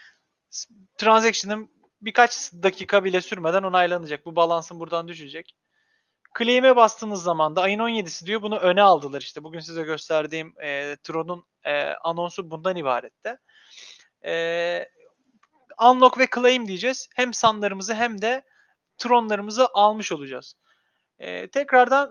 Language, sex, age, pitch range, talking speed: Turkish, male, 30-49, 170-230 Hz, 120 wpm